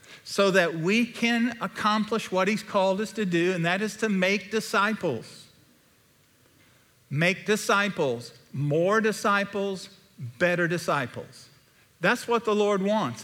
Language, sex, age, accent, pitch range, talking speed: English, male, 50-69, American, 135-195 Hz, 125 wpm